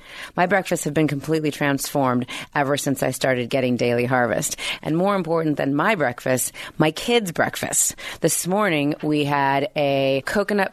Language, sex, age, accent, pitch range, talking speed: English, female, 30-49, American, 145-180 Hz, 155 wpm